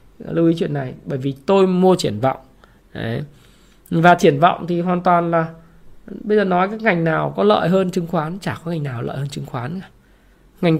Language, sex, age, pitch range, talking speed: Vietnamese, male, 20-39, 160-210 Hz, 215 wpm